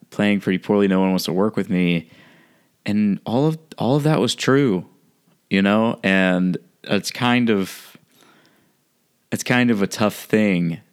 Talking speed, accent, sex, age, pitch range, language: 165 wpm, American, male, 20-39, 85-105 Hz, English